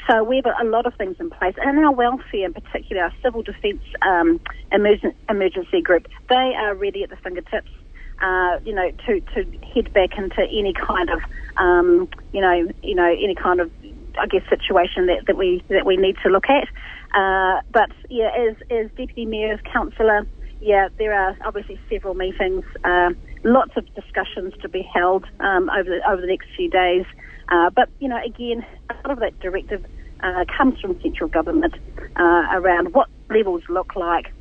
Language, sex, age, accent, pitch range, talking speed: English, female, 40-59, Australian, 185-240 Hz, 185 wpm